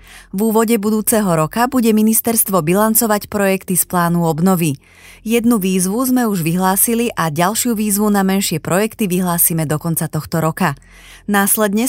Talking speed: 140 wpm